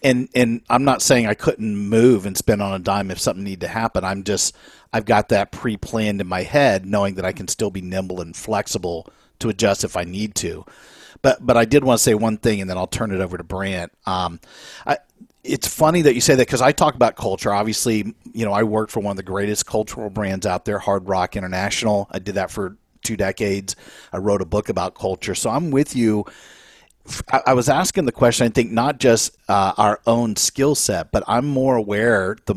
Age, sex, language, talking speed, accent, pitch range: 40-59, male, English, 230 wpm, American, 100-120 Hz